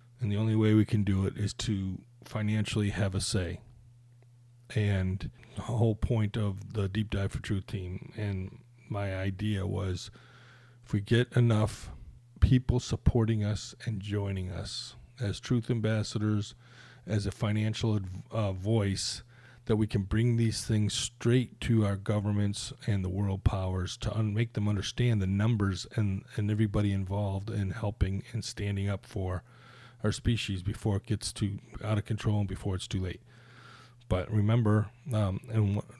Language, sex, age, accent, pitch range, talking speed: English, male, 40-59, American, 100-120 Hz, 160 wpm